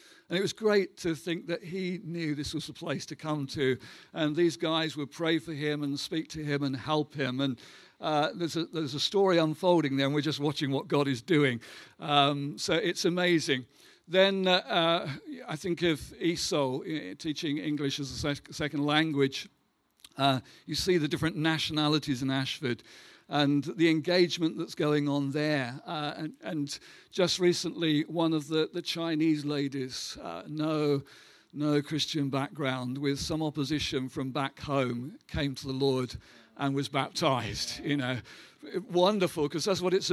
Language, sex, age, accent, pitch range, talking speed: English, male, 50-69, British, 140-165 Hz, 170 wpm